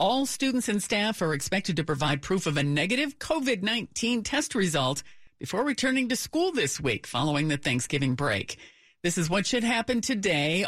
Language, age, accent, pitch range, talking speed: English, 50-69, American, 150-220 Hz, 175 wpm